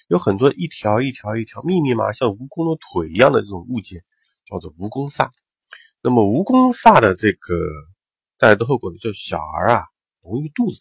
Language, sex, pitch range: Chinese, male, 95-140 Hz